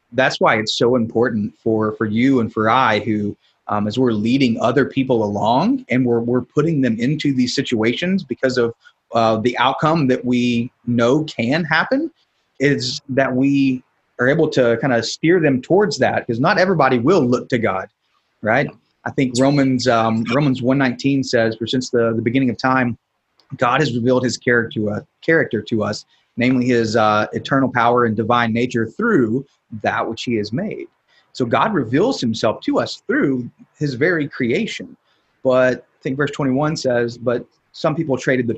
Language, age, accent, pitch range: English, 30-49, American, 115-135 Hz